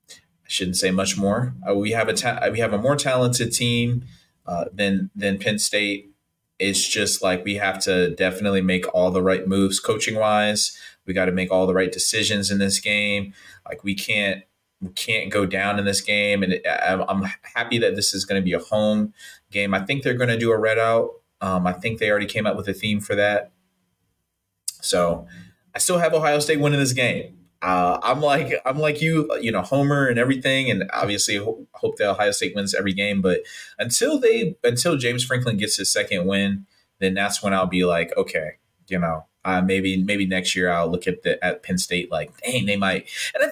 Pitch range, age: 95-115 Hz, 30-49